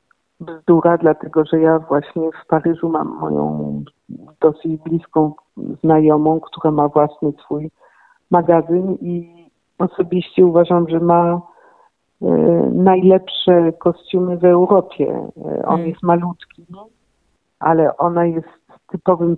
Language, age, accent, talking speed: Polish, 50-69, native, 100 wpm